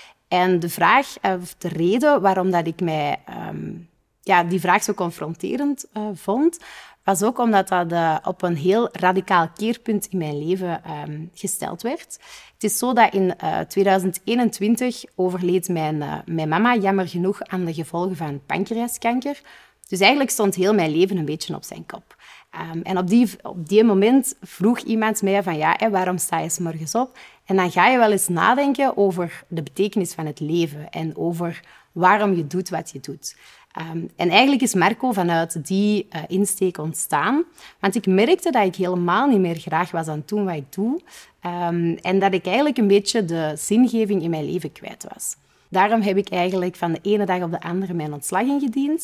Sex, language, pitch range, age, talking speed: female, Dutch, 170-220 Hz, 30-49, 185 wpm